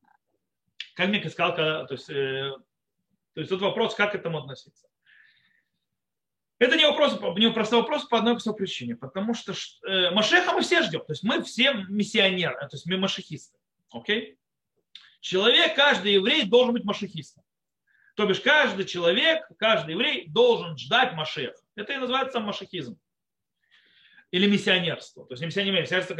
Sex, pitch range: male, 170-265 Hz